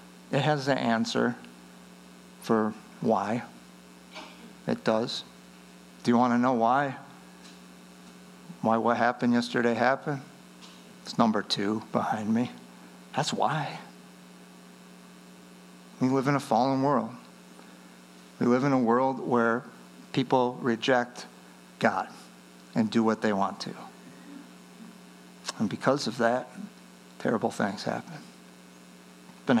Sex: male